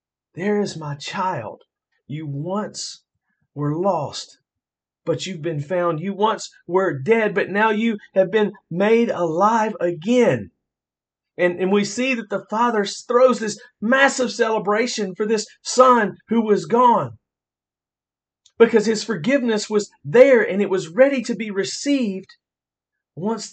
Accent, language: American, English